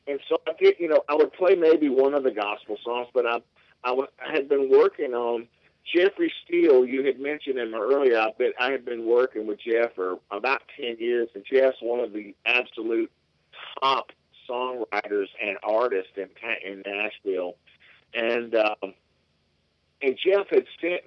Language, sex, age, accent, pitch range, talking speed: English, male, 50-69, American, 110-175 Hz, 175 wpm